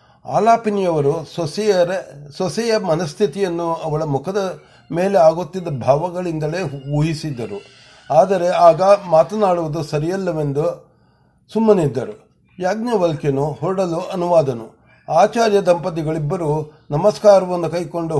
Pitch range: 145-195 Hz